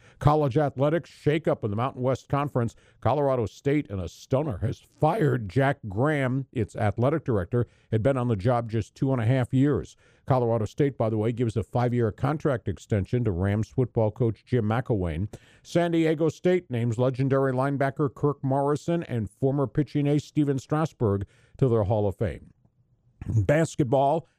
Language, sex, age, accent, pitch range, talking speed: English, male, 50-69, American, 110-140 Hz, 165 wpm